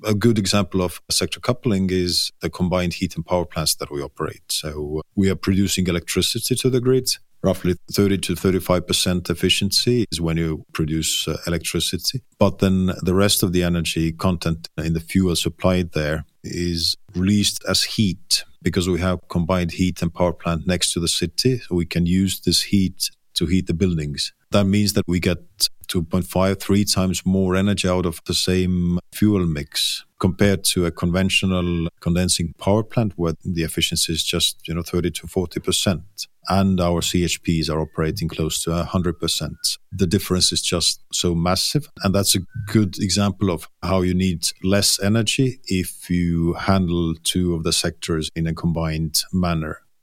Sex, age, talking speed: male, 50-69, 175 wpm